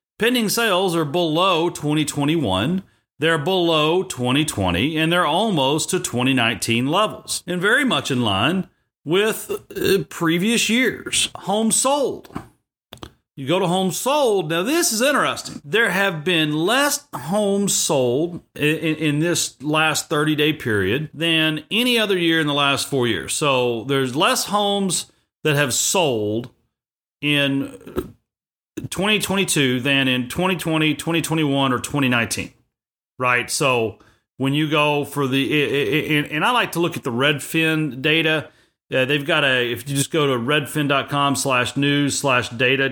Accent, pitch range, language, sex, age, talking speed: American, 135-180 Hz, English, male, 40-59, 140 wpm